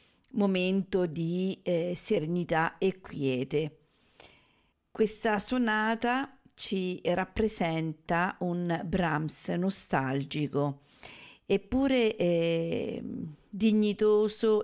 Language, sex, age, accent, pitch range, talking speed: Italian, female, 50-69, native, 165-205 Hz, 65 wpm